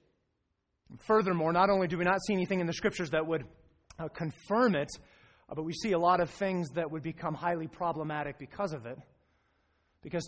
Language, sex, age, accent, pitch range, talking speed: English, male, 30-49, American, 140-180 Hz, 195 wpm